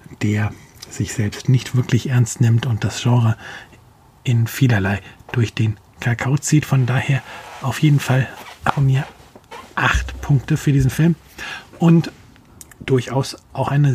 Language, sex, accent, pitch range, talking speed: German, male, German, 110-130 Hz, 140 wpm